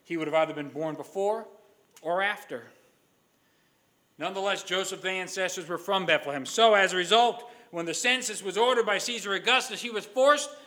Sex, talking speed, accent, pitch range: male, 170 wpm, American, 170-250 Hz